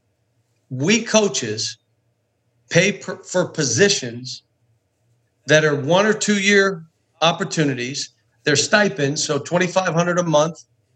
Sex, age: male, 50-69